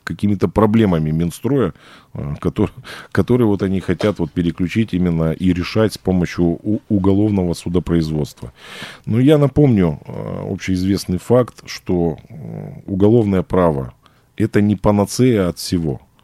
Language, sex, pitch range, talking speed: Russian, male, 80-105 Hz, 100 wpm